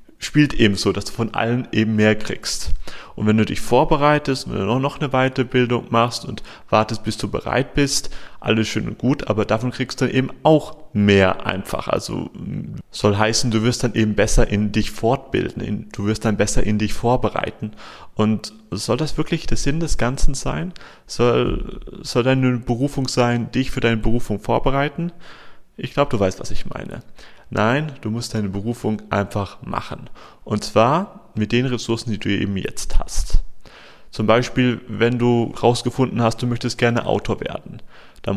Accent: German